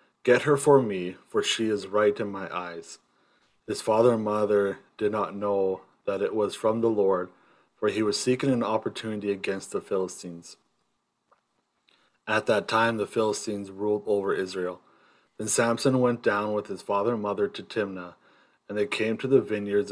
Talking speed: 175 wpm